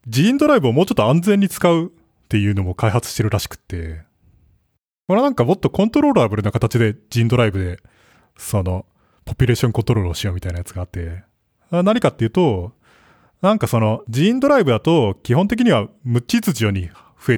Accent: native